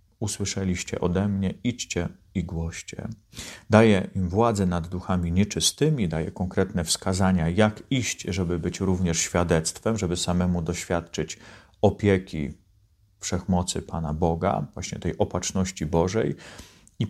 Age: 40-59